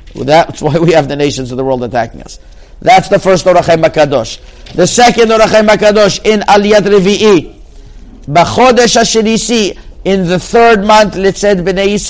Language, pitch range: English, 150-205 Hz